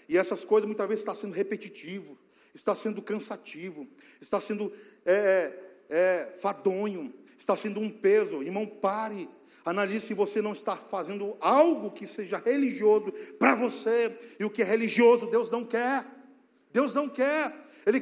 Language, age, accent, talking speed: Portuguese, 50-69, Brazilian, 155 wpm